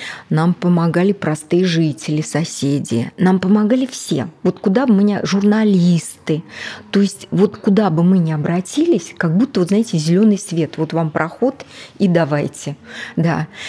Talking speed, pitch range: 150 wpm, 155-200 Hz